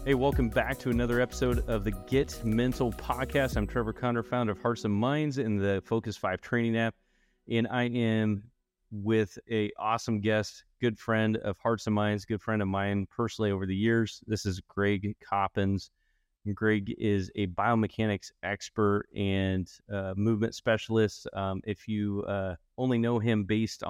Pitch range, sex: 100-115 Hz, male